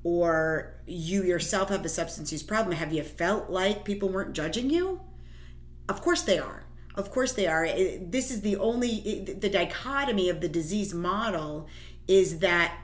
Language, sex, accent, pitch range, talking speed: English, female, American, 165-230 Hz, 170 wpm